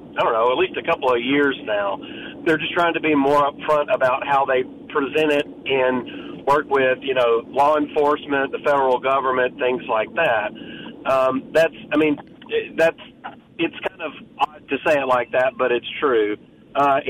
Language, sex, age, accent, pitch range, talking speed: English, male, 40-59, American, 135-160 Hz, 185 wpm